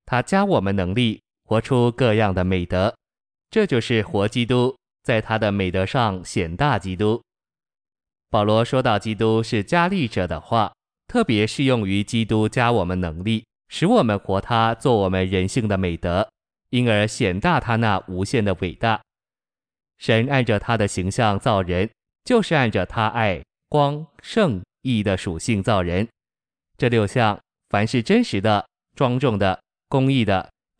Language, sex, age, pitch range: Chinese, male, 20-39, 100-125 Hz